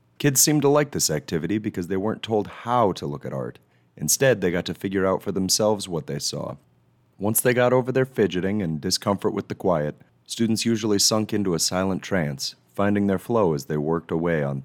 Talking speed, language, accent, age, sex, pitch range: 215 wpm, English, American, 30-49, male, 80-105 Hz